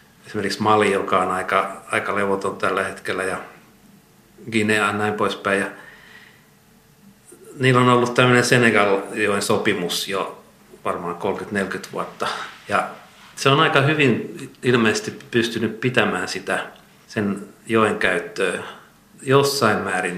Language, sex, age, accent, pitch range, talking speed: Finnish, male, 50-69, native, 100-120 Hz, 115 wpm